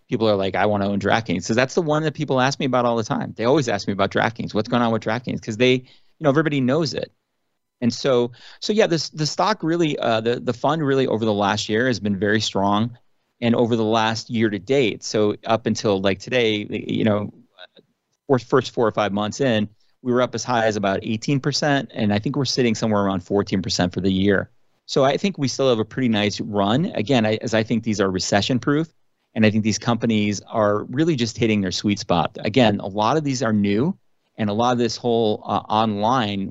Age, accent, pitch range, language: 30-49, American, 100-120 Hz, English